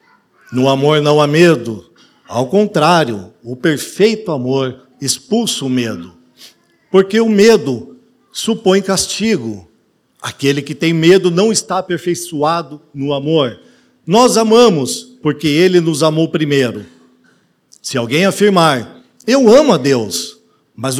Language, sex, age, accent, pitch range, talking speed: Portuguese, male, 50-69, Brazilian, 130-185 Hz, 120 wpm